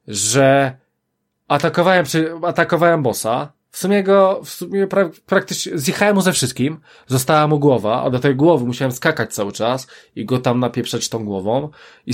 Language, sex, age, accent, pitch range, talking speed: Polish, male, 20-39, native, 125-160 Hz, 165 wpm